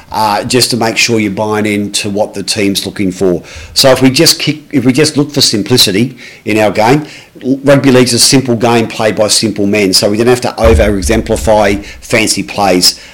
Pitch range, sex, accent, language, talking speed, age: 100-120 Hz, male, Australian, English, 205 wpm, 40-59